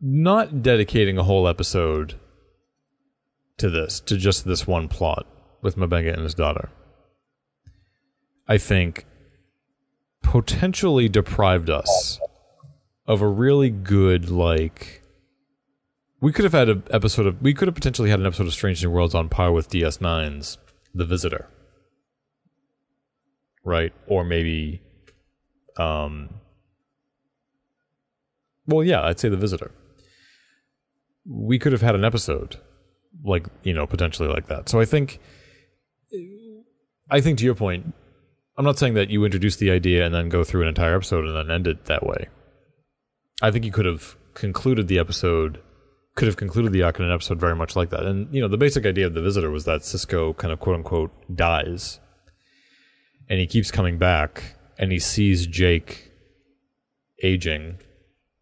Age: 30-49